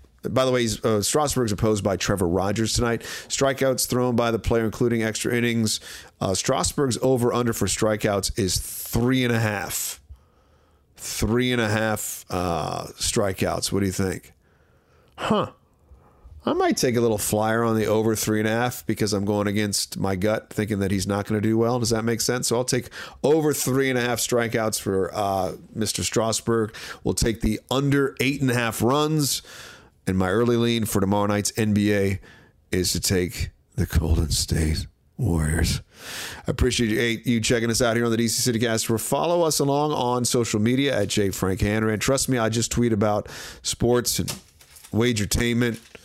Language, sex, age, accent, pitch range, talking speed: English, male, 40-59, American, 100-125 Hz, 180 wpm